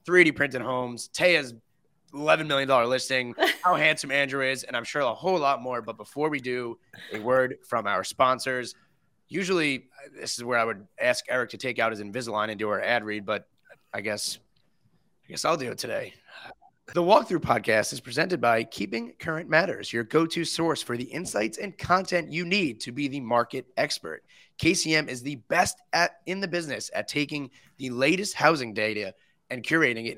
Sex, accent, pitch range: male, American, 120-155 Hz